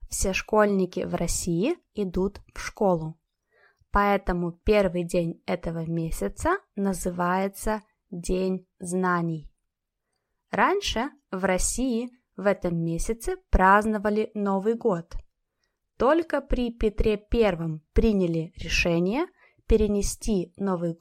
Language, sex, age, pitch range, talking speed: Russian, female, 20-39, 175-225 Hz, 90 wpm